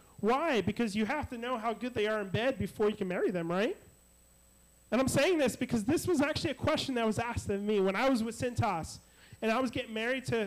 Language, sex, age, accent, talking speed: English, male, 30-49, American, 250 wpm